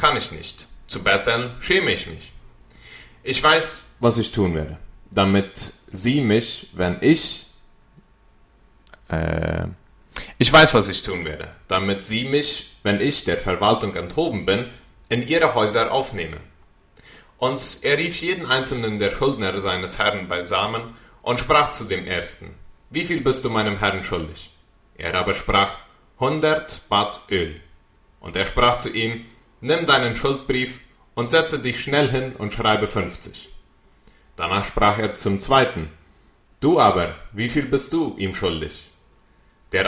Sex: male